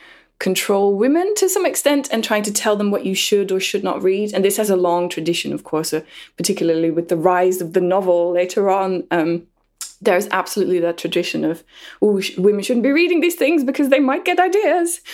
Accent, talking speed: British, 220 wpm